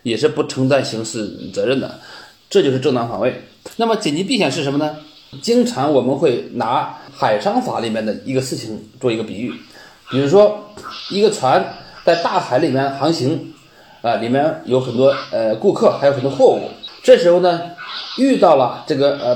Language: Chinese